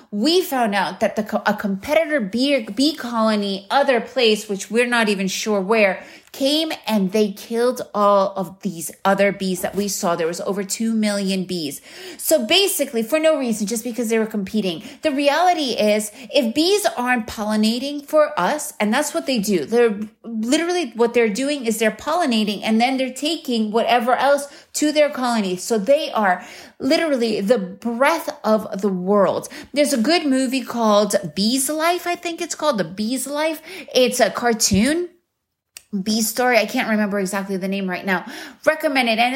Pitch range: 210-290 Hz